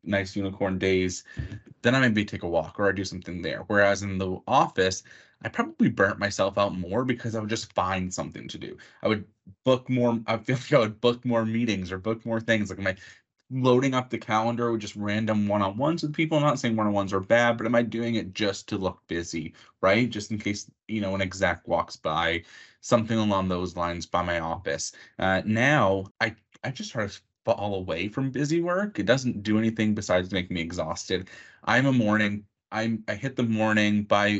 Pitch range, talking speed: 95-120 Hz, 215 wpm